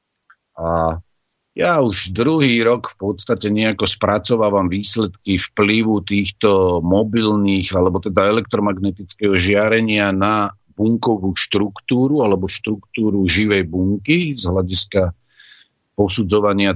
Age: 50-69